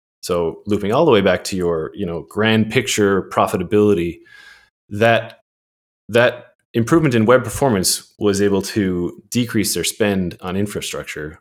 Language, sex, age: English, male, 30-49